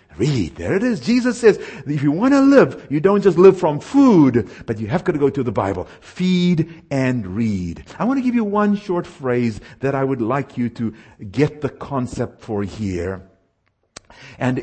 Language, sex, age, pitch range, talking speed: English, male, 60-79, 110-175 Hz, 200 wpm